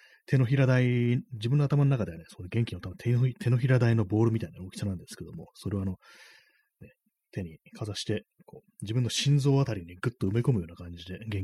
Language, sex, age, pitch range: Japanese, male, 30-49, 90-120 Hz